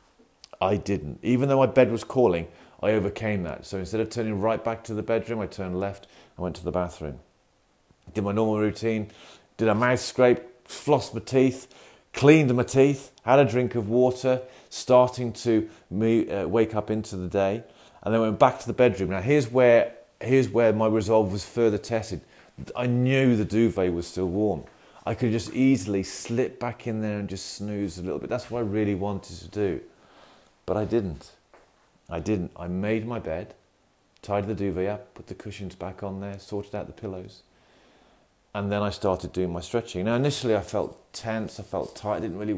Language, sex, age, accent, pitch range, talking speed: English, male, 30-49, British, 95-120 Hz, 195 wpm